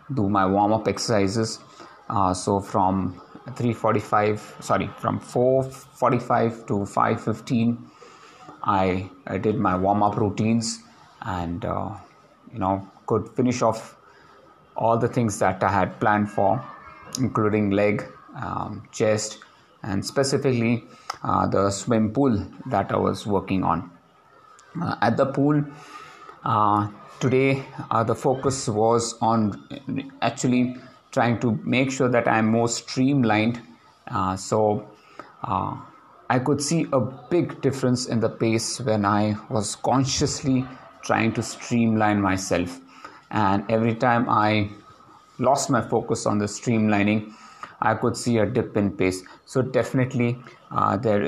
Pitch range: 105-125 Hz